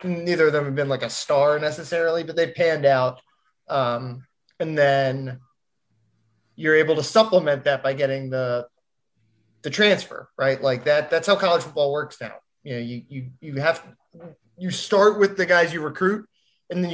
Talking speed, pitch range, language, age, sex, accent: 180 wpm, 130-165 Hz, English, 20-39, male, American